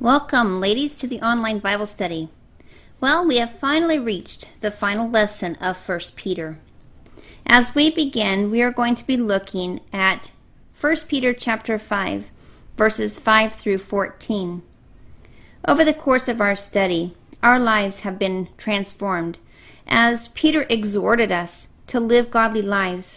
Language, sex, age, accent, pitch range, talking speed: English, female, 40-59, American, 190-245 Hz, 140 wpm